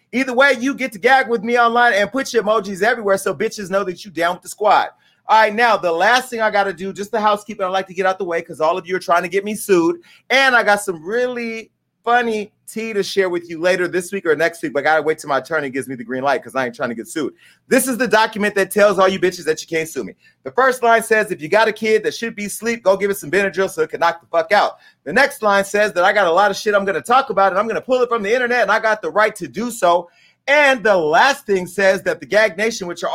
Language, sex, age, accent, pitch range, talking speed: English, male, 30-49, American, 170-220 Hz, 310 wpm